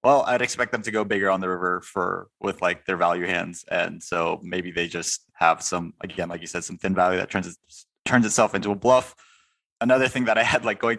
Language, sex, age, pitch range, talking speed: English, male, 20-39, 95-115 Hz, 245 wpm